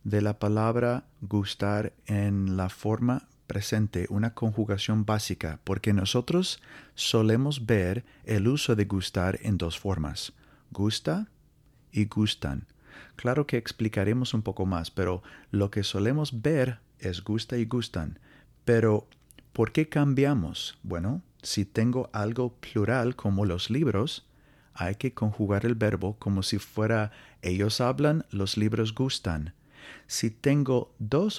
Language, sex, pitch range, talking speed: Spanish, male, 100-130 Hz, 130 wpm